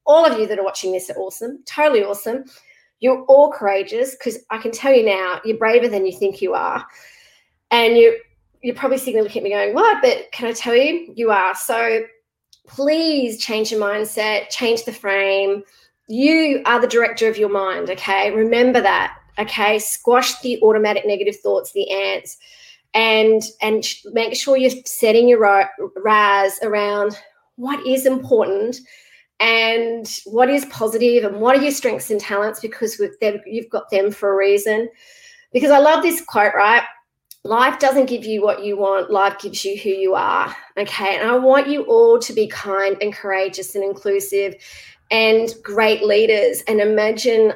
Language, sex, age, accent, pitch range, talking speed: English, female, 30-49, Australian, 205-255 Hz, 175 wpm